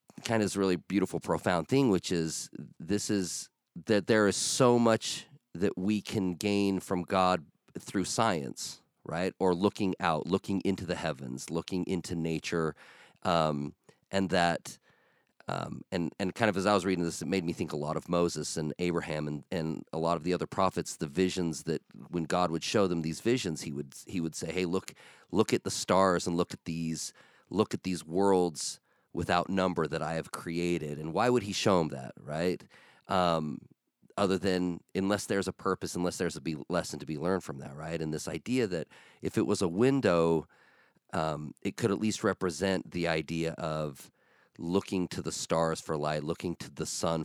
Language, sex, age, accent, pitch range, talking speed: English, male, 40-59, American, 80-95 Hz, 195 wpm